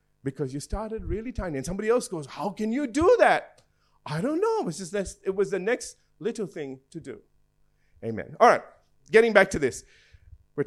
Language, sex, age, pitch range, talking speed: English, male, 50-69, 160-235 Hz, 210 wpm